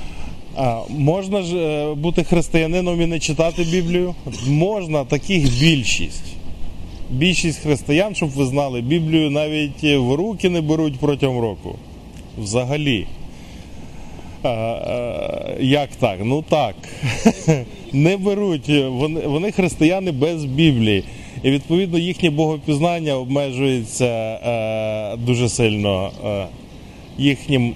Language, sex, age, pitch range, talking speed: Ukrainian, male, 20-39, 120-155 Hz, 95 wpm